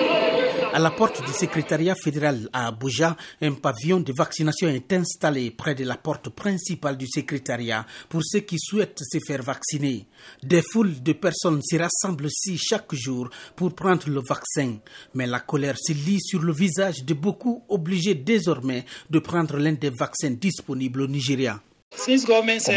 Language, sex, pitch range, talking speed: French, male, 125-175 Hz, 165 wpm